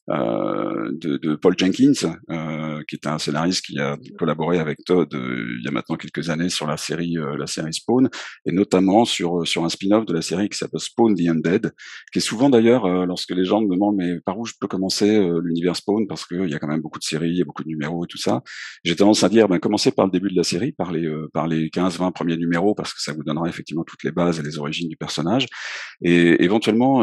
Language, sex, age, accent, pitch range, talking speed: French, male, 40-59, French, 80-100 Hz, 260 wpm